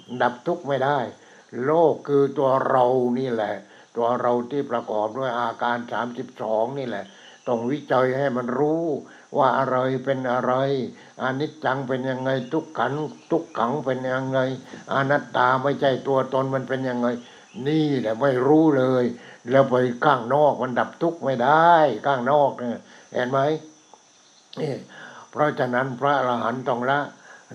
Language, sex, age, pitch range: English, male, 60-79, 125-135 Hz